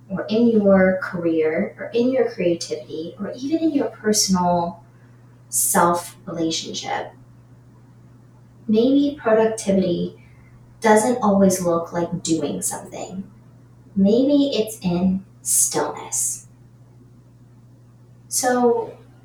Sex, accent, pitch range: female, American, 125-205 Hz